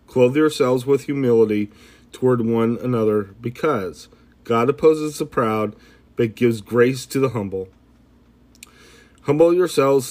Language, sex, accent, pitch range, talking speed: English, male, American, 115-125 Hz, 120 wpm